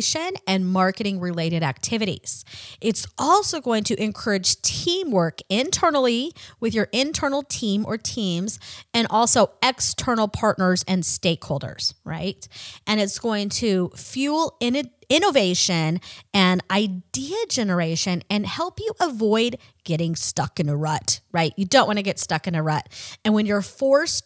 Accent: American